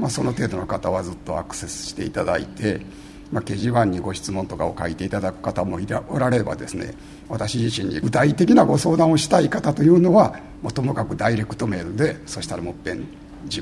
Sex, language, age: male, Japanese, 60-79